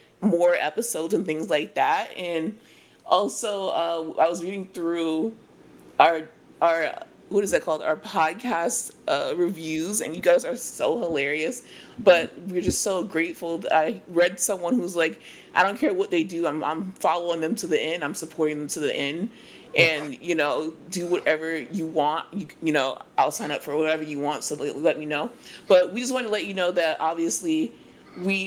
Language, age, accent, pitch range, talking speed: English, 30-49, American, 165-220 Hz, 190 wpm